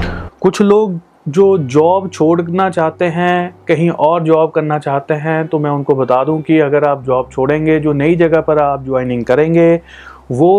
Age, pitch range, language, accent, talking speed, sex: 30-49, 135-165 Hz, Hindi, native, 180 wpm, male